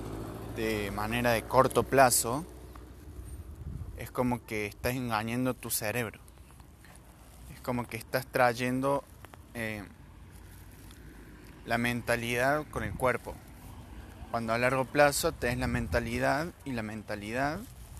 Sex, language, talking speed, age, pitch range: male, Spanish, 110 wpm, 20-39, 85-125 Hz